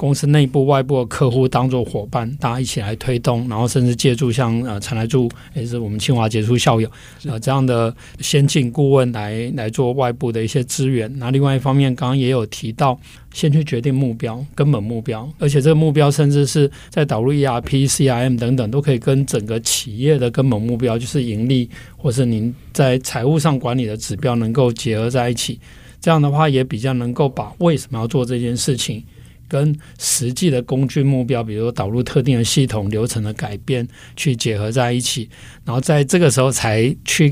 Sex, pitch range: male, 120-140 Hz